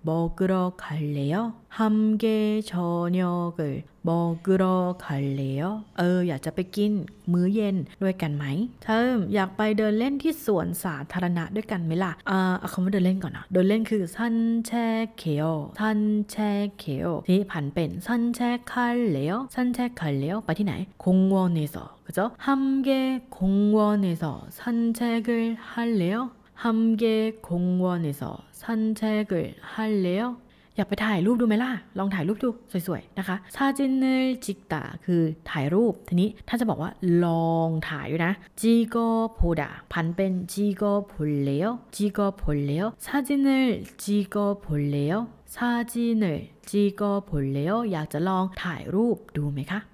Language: Korean